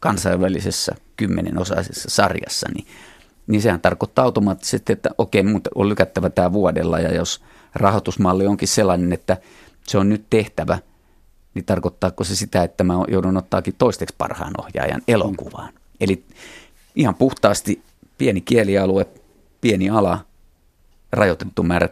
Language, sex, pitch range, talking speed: Finnish, male, 85-100 Hz, 125 wpm